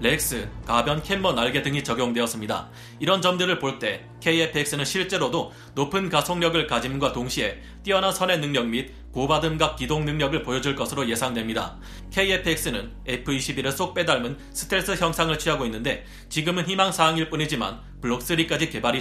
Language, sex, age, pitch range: Korean, male, 30-49, 125-170 Hz